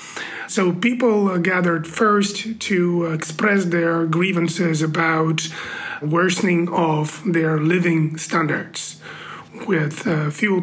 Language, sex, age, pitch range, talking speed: English, male, 30-49, 165-200 Hz, 95 wpm